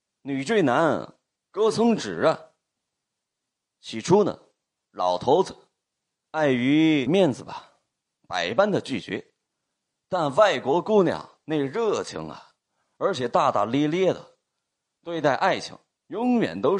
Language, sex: Chinese, male